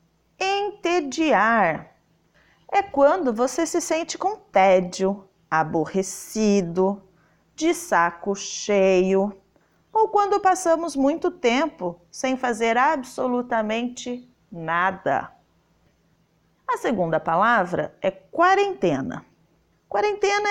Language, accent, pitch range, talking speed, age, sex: Portuguese, Brazilian, 195-320 Hz, 75 wpm, 40-59, female